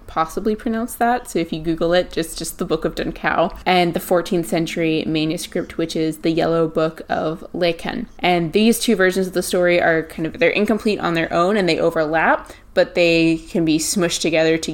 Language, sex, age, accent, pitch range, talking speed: English, female, 20-39, American, 165-205 Hz, 210 wpm